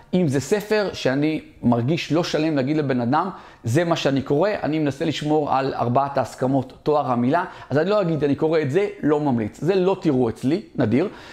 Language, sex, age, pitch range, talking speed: Hebrew, male, 40-59, 130-180 Hz, 195 wpm